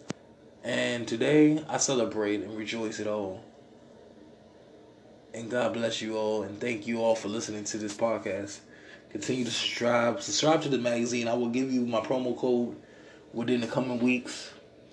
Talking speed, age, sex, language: 160 wpm, 20-39, male, English